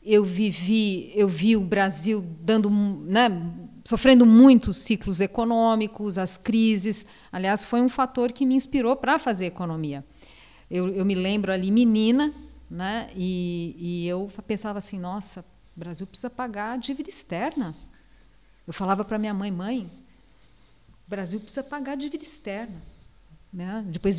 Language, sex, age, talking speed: Portuguese, female, 40-59, 145 wpm